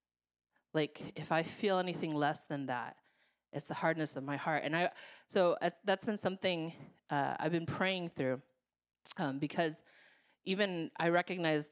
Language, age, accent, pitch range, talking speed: English, 30-49, American, 145-185 Hz, 160 wpm